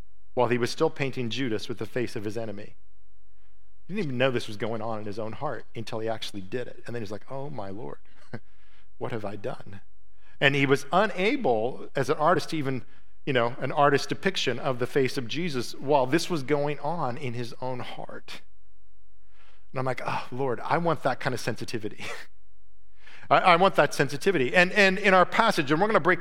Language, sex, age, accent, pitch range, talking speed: English, male, 40-59, American, 110-145 Hz, 215 wpm